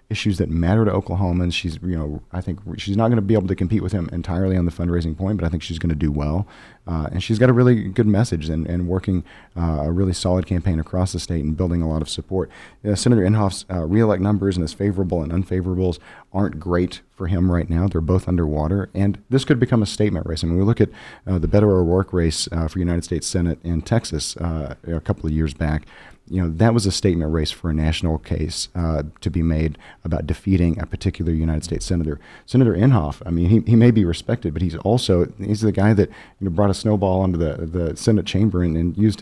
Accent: American